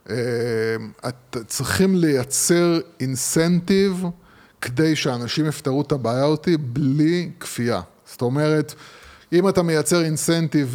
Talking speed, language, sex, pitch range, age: 90 wpm, Hebrew, male, 130-170 Hz, 20-39